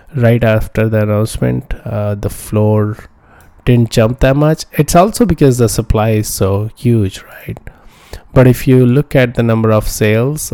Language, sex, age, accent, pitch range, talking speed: English, male, 20-39, Indian, 105-120 Hz, 165 wpm